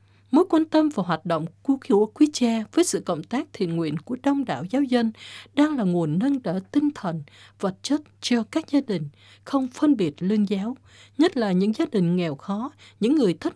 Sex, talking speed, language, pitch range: female, 210 wpm, Vietnamese, 175-275 Hz